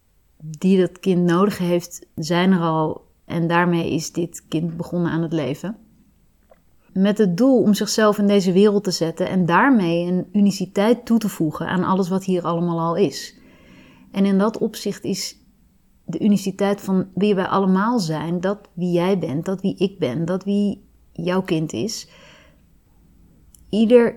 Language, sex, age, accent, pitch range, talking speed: Dutch, female, 30-49, Dutch, 170-210 Hz, 165 wpm